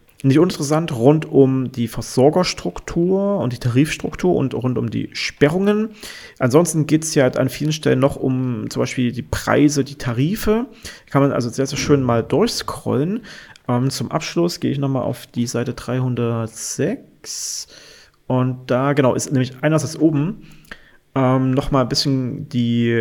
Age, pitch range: 30-49, 125-155 Hz